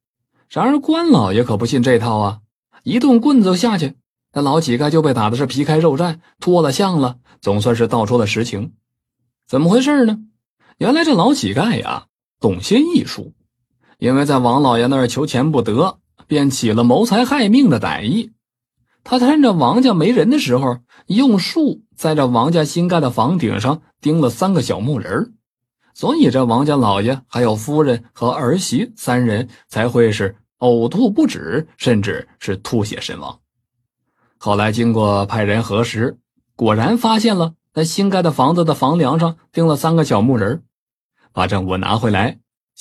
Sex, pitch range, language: male, 115-175 Hz, Chinese